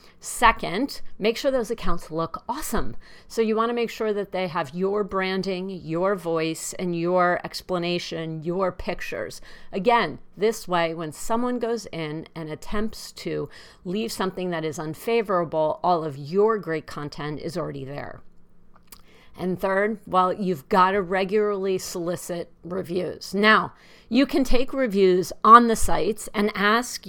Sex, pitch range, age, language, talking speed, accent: female, 175-220 Hz, 50-69, English, 145 wpm, American